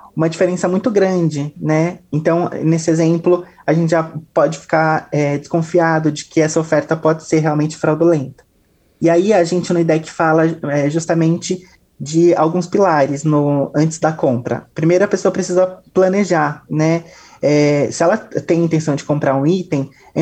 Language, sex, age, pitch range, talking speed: Portuguese, male, 20-39, 150-180 Hz, 150 wpm